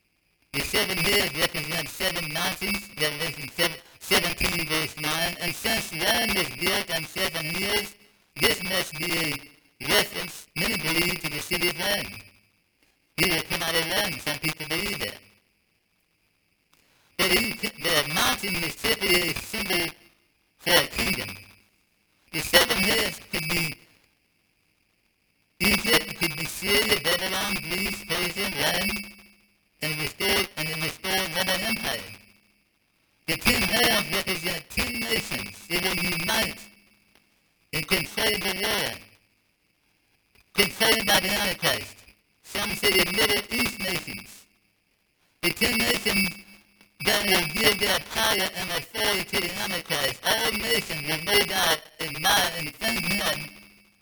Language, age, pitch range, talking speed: English, 50-69, 155-205 Hz, 120 wpm